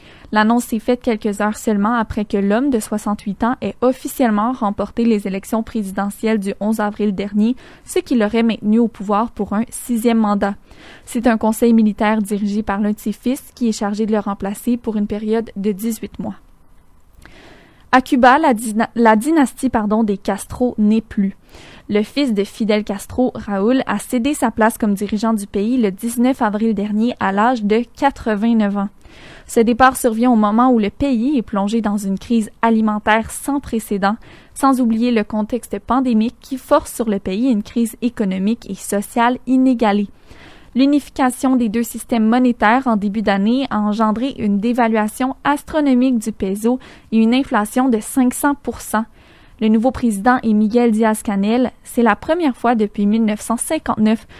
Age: 20-39